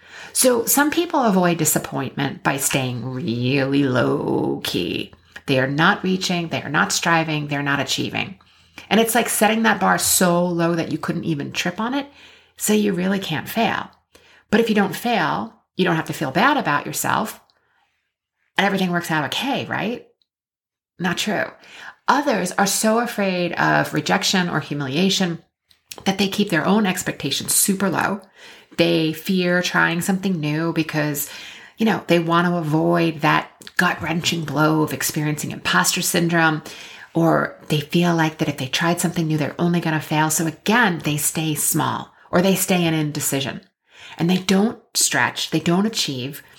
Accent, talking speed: American, 165 wpm